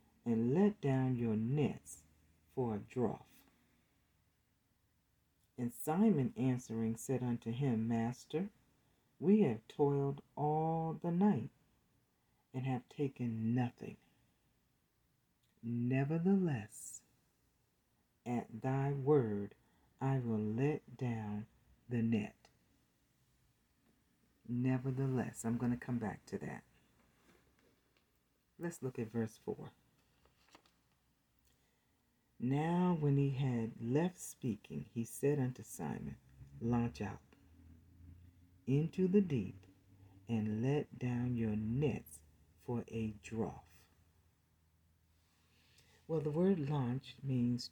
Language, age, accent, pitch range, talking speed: English, 50-69, American, 110-135 Hz, 95 wpm